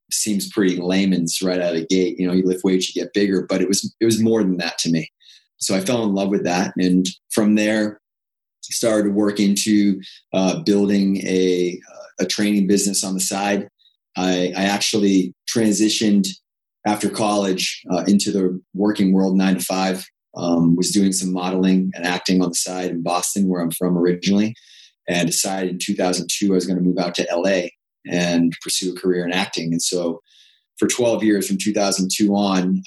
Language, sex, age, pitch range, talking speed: English, male, 30-49, 90-100 Hz, 195 wpm